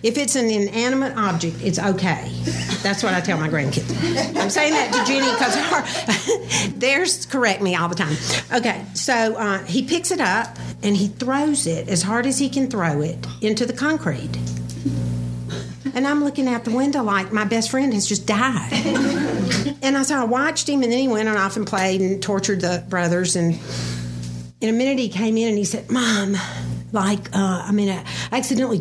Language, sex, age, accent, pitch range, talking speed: English, female, 50-69, American, 165-240 Hz, 195 wpm